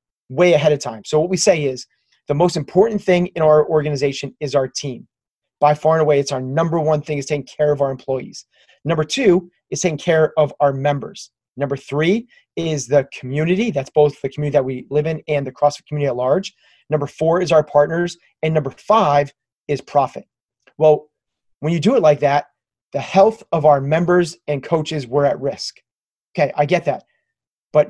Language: English